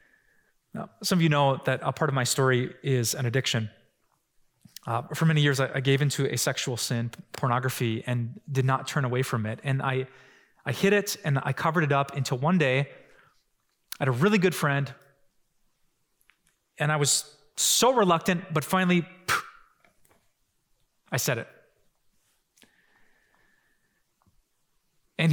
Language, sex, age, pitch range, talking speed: English, male, 20-39, 130-180 Hz, 150 wpm